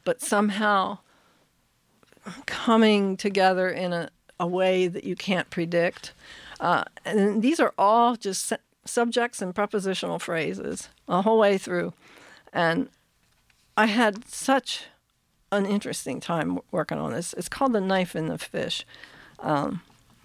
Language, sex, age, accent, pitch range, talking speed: English, female, 50-69, American, 180-215 Hz, 130 wpm